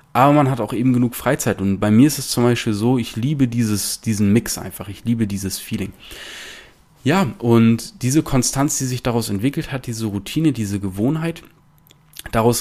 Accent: German